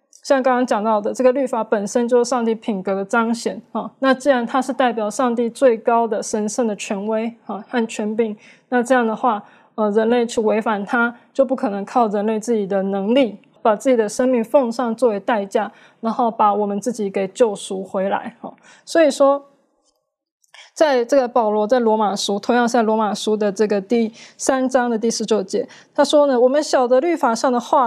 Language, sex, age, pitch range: Chinese, female, 20-39, 215-265 Hz